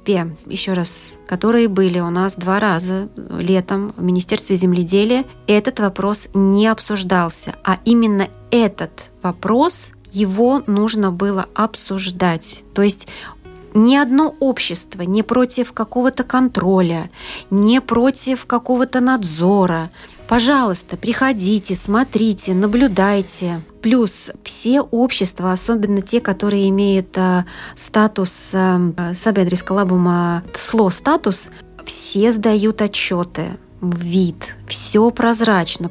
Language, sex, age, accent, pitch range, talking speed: Russian, female, 20-39, native, 185-225 Hz, 95 wpm